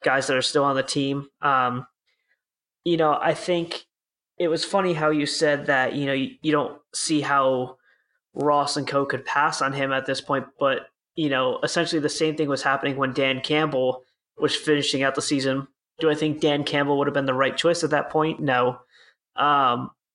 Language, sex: English, male